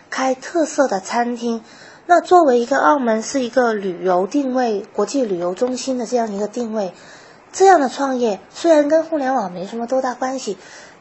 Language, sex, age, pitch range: Chinese, female, 20-39, 210-270 Hz